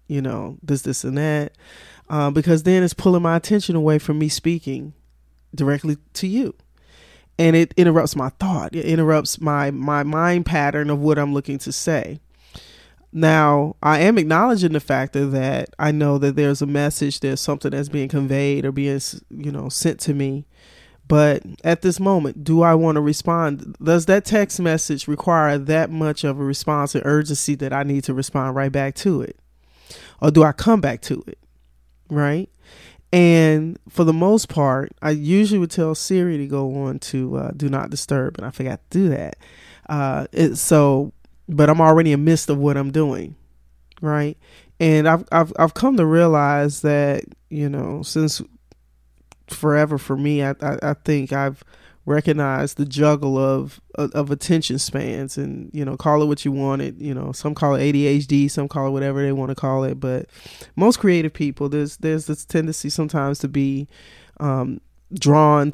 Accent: American